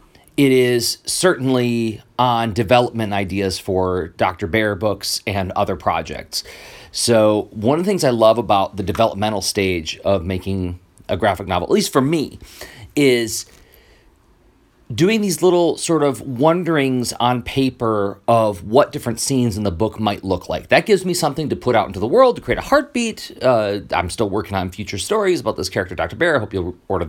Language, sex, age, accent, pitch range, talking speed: English, male, 40-59, American, 100-150 Hz, 180 wpm